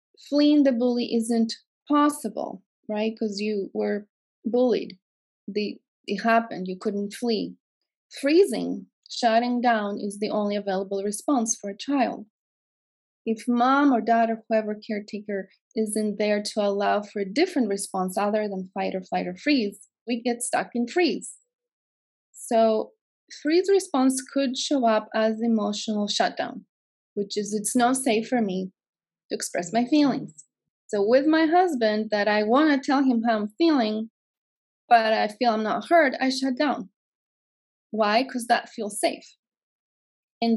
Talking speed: 150 wpm